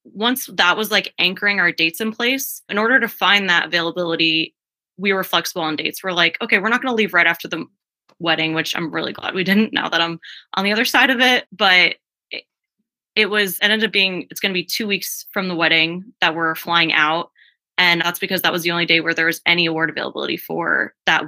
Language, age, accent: English, 20-39, American